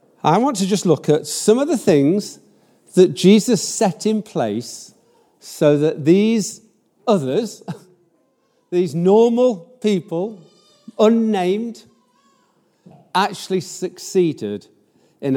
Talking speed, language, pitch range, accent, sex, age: 100 wpm, English, 135-200 Hz, British, male, 50-69